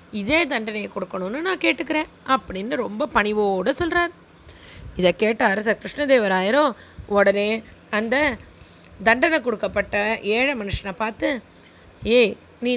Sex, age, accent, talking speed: female, 20-39, native, 105 wpm